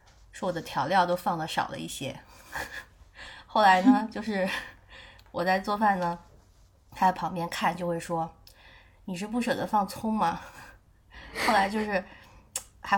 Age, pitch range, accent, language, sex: 20-39, 170-210 Hz, native, Chinese, female